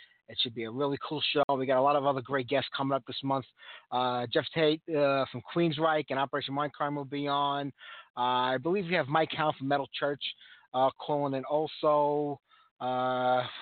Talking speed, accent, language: 205 wpm, American, English